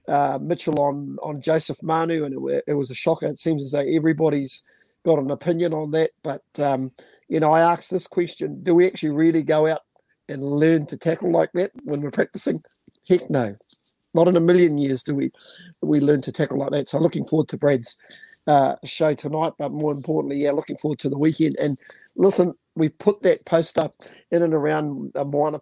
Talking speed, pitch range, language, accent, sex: 210 wpm, 145-170 Hz, English, Australian, male